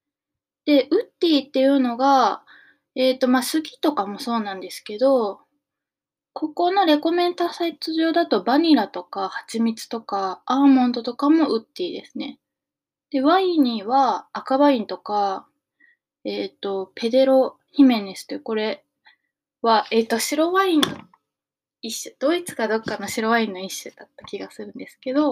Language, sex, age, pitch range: Japanese, female, 20-39, 220-290 Hz